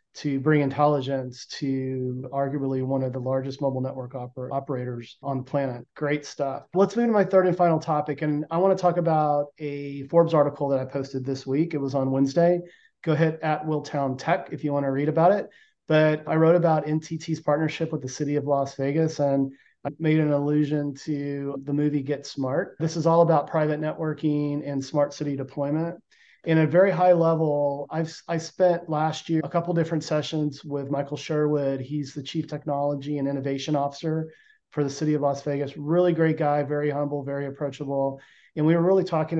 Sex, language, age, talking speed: male, English, 30-49, 195 wpm